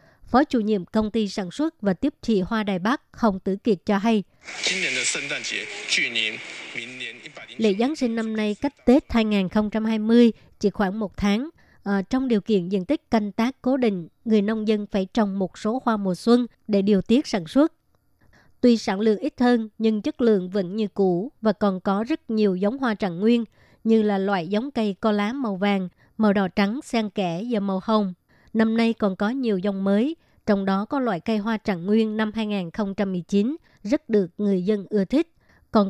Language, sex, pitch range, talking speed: Vietnamese, male, 200-230 Hz, 195 wpm